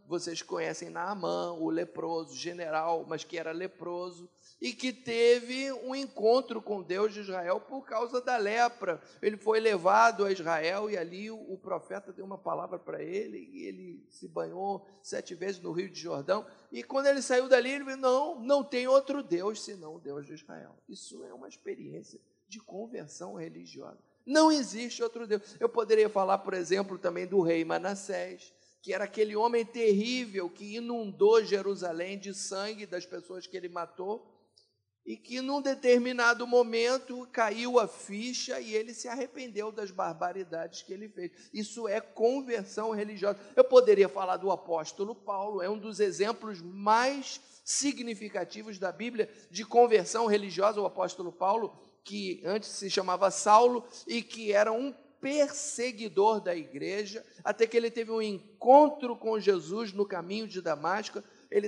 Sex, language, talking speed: male, Portuguese, 160 wpm